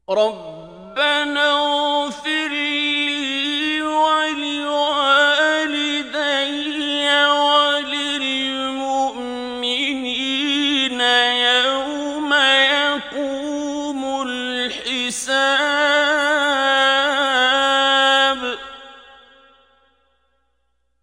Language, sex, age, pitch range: Turkish, male, 40-59, 250-290 Hz